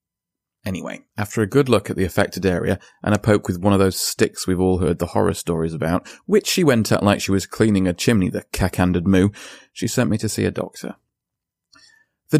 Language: English